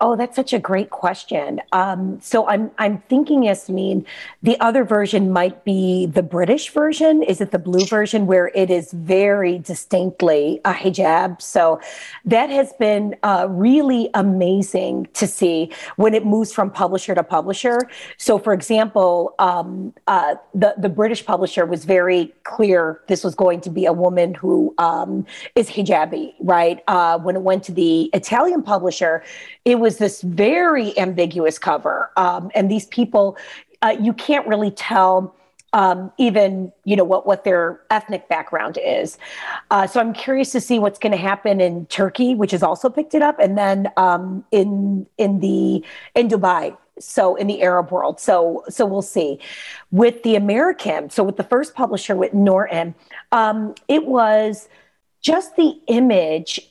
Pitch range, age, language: 180-225 Hz, 40-59, English